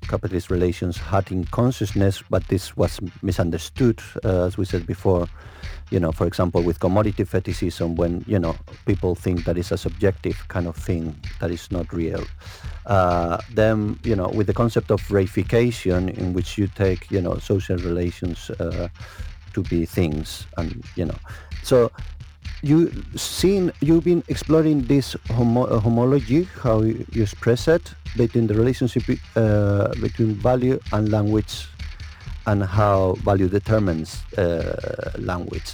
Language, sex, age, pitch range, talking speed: English, male, 50-69, 85-115 Hz, 150 wpm